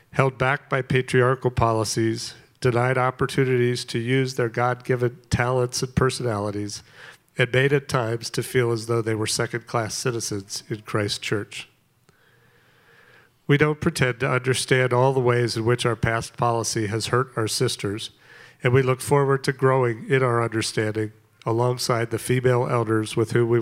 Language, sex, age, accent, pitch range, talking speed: English, male, 40-59, American, 115-130 Hz, 160 wpm